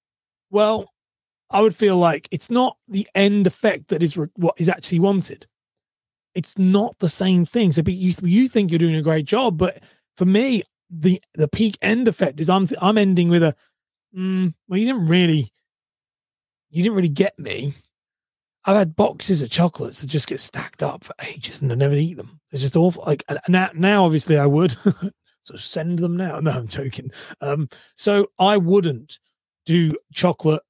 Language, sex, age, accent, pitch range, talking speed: English, male, 30-49, British, 145-185 Hz, 185 wpm